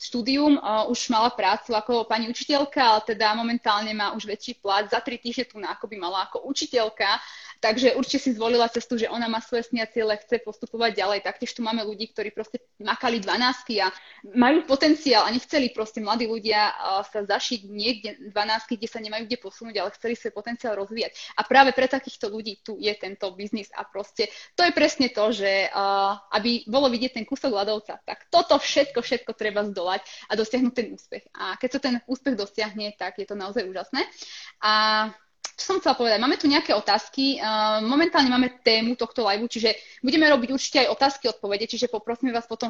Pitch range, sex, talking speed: 215-260 Hz, female, 200 wpm